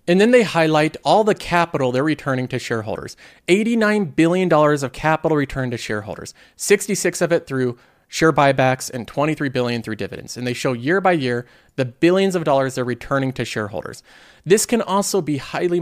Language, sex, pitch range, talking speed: English, male, 130-175 Hz, 180 wpm